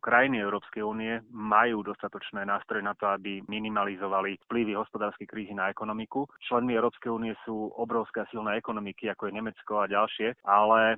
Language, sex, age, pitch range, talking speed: Slovak, male, 30-49, 100-115 Hz, 155 wpm